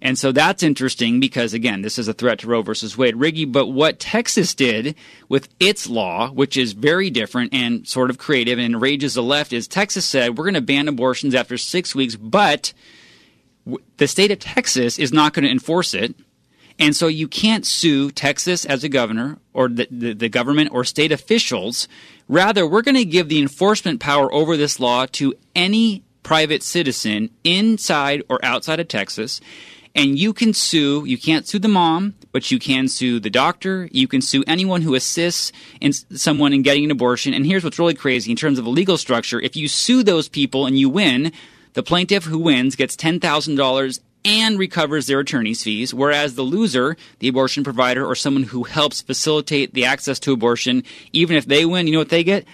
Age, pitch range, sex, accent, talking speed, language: 30-49, 130-165 Hz, male, American, 200 wpm, English